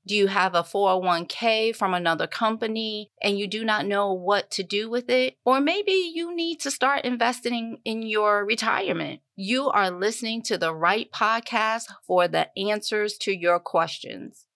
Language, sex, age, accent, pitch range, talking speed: English, female, 40-59, American, 200-250 Hz, 170 wpm